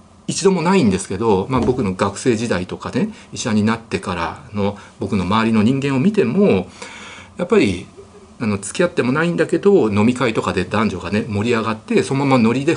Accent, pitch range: native, 100-165 Hz